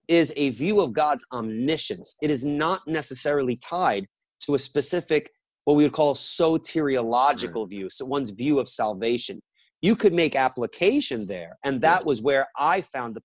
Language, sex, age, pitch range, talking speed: English, male, 30-49, 120-160 Hz, 170 wpm